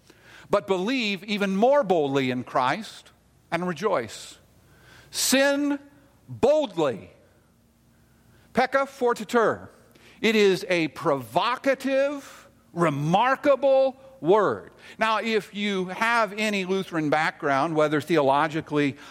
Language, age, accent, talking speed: English, 50-69, American, 90 wpm